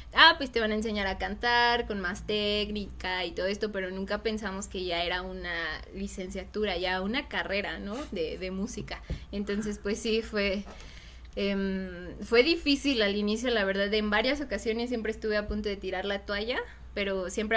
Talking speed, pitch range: 180 wpm, 195-225 Hz